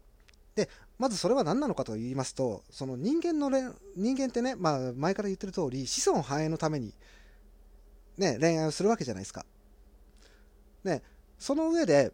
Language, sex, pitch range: Japanese, male, 120-200 Hz